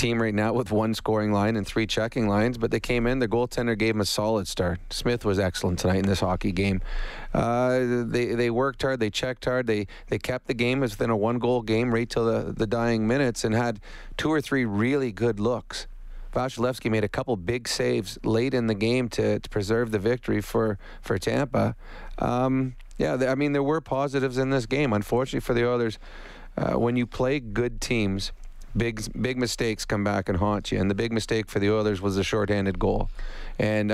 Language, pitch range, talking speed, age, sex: English, 105-120 Hz, 215 wpm, 30-49, male